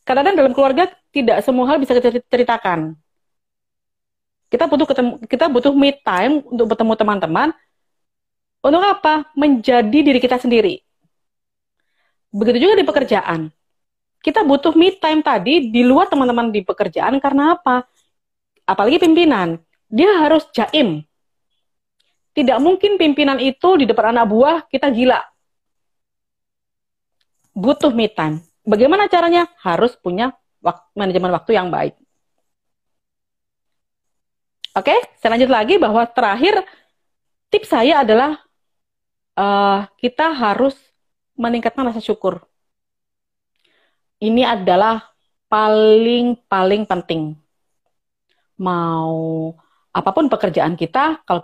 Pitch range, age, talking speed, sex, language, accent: 200-290 Hz, 30-49, 105 wpm, female, Indonesian, native